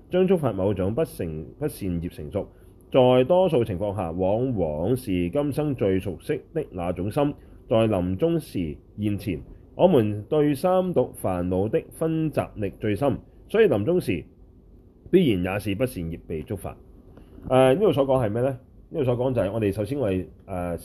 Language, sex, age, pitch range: Chinese, male, 30-49, 90-130 Hz